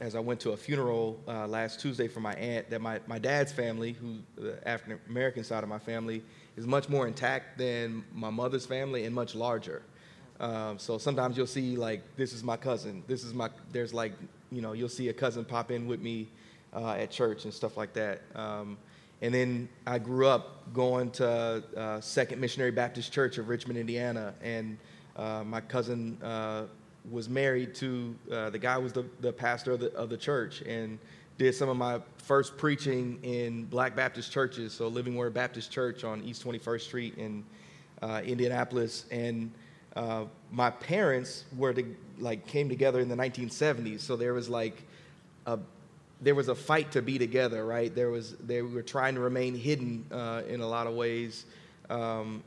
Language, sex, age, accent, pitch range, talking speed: English, male, 30-49, American, 115-125 Hz, 190 wpm